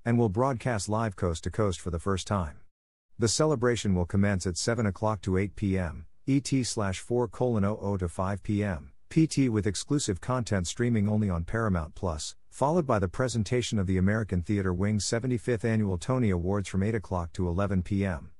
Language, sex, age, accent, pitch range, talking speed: English, male, 50-69, American, 90-115 Hz, 175 wpm